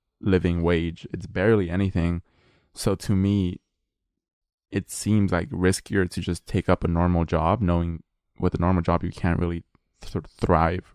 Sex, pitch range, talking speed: male, 90-110 Hz, 165 wpm